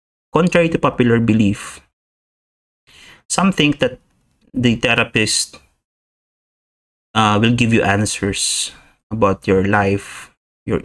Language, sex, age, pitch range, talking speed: English, male, 30-49, 100-125 Hz, 100 wpm